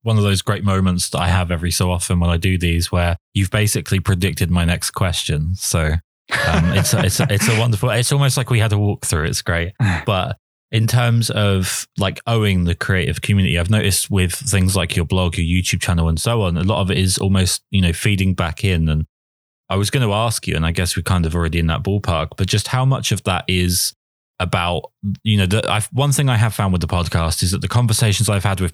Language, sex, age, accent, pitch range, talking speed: English, male, 20-39, British, 85-110 Hz, 240 wpm